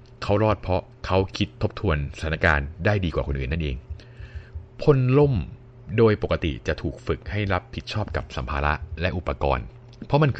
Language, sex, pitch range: Thai, male, 80-105 Hz